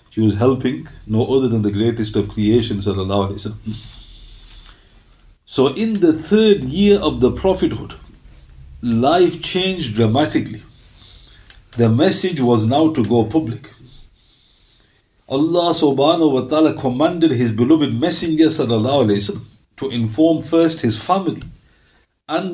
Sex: male